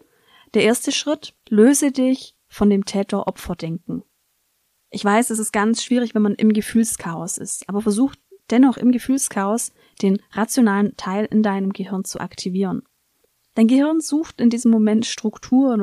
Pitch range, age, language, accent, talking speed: 195-235 Hz, 30-49, German, German, 150 wpm